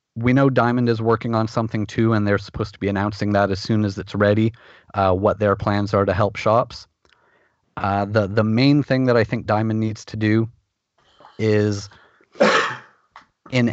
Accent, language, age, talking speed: American, English, 30-49, 185 wpm